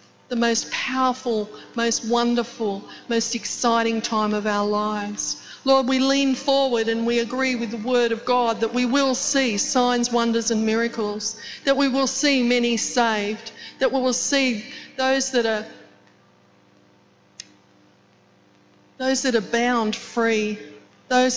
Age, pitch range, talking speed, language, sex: 50-69, 205-250 Hz, 135 wpm, English, female